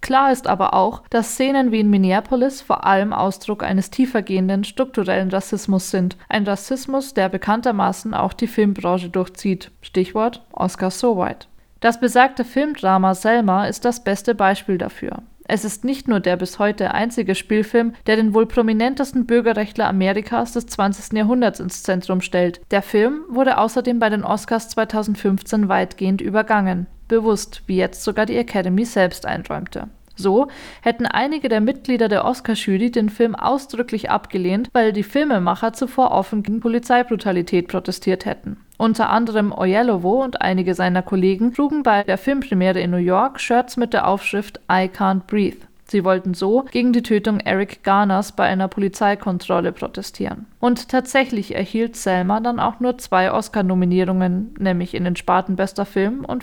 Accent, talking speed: German, 155 wpm